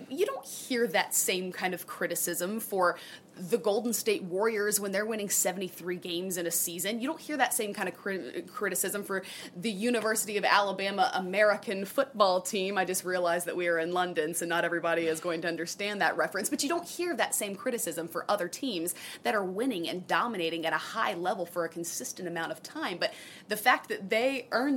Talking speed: 210 wpm